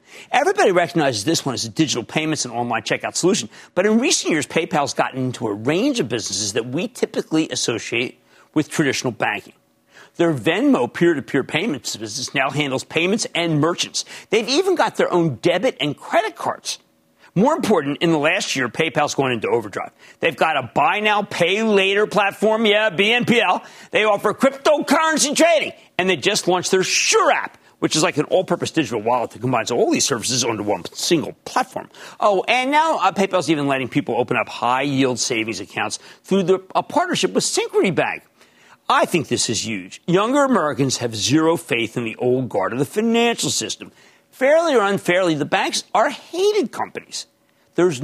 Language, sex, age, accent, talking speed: English, male, 50-69, American, 175 wpm